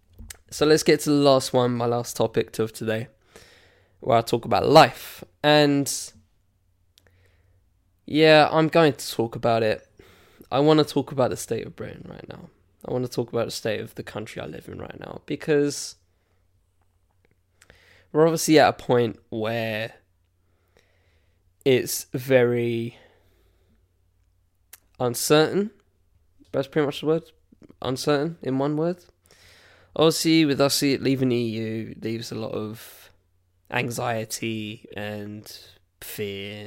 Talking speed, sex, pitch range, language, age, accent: 135 wpm, male, 90-130 Hz, English, 10-29, British